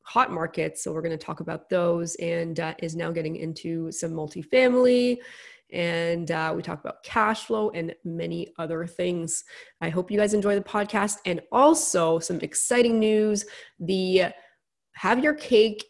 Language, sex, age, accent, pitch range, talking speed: English, female, 20-39, American, 165-200 Hz, 165 wpm